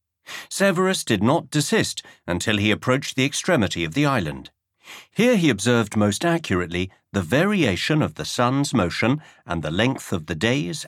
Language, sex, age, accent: English, male, 50-69, British